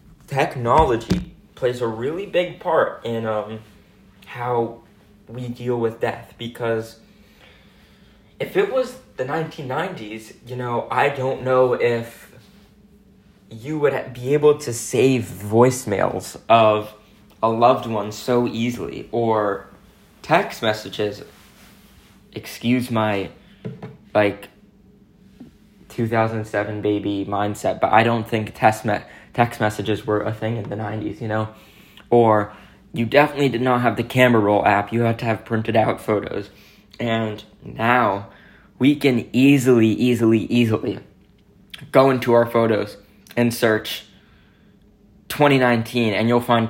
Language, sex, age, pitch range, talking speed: English, male, 20-39, 110-125 Hz, 125 wpm